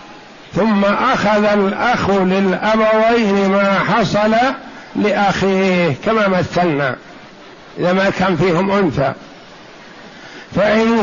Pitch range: 200-220 Hz